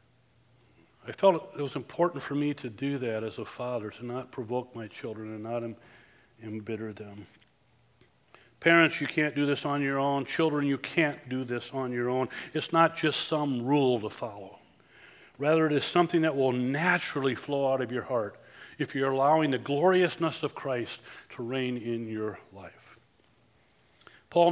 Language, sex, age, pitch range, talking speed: English, male, 40-59, 120-150 Hz, 170 wpm